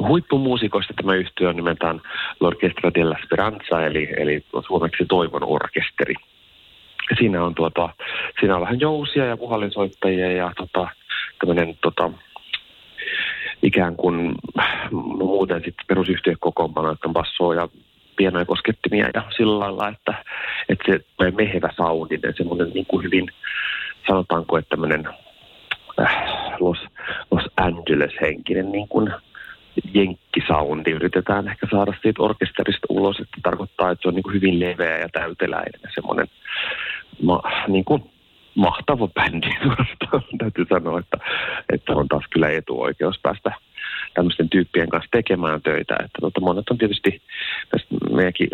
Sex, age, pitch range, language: male, 30-49, 85-105 Hz, Finnish